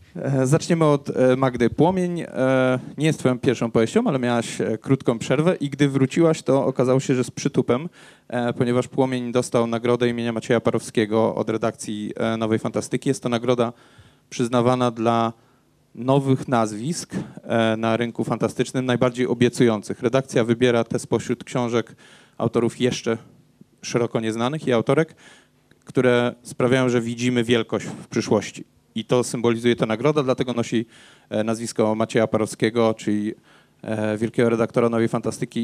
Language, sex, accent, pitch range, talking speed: Polish, male, native, 110-130 Hz, 130 wpm